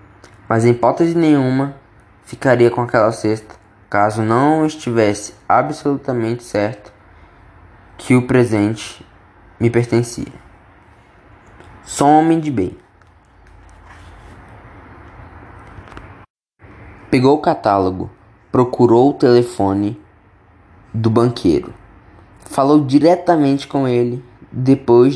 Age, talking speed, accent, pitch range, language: 10-29, 85 wpm, Brazilian, 95-120 Hz, Portuguese